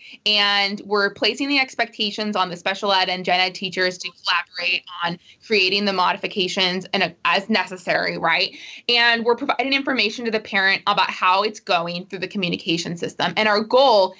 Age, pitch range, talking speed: 20-39, 185-235 Hz, 175 wpm